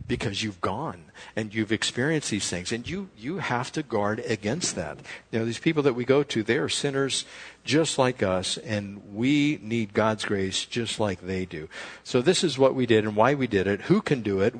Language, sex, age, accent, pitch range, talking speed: English, male, 60-79, American, 120-195 Hz, 220 wpm